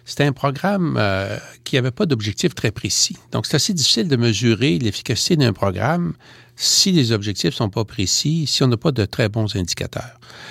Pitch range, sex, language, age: 105-140 Hz, male, French, 60-79